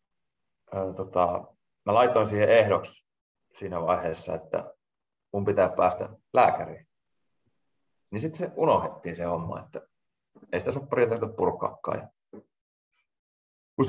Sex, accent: male, native